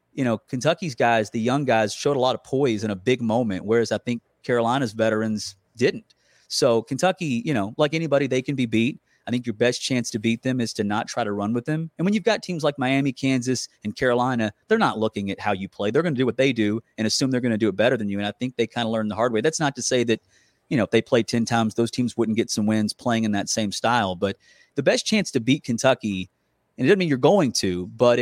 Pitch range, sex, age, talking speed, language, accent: 110-130 Hz, male, 30-49, 275 wpm, English, American